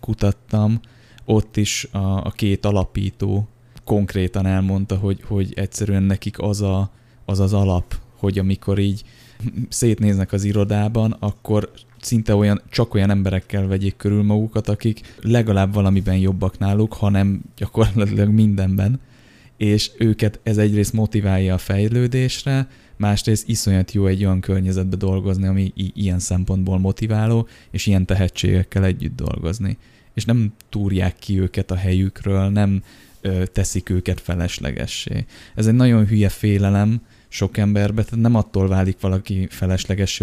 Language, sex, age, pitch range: Hungarian, male, 20-39, 95-110 Hz